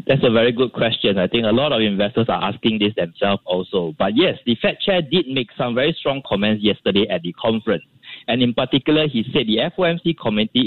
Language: English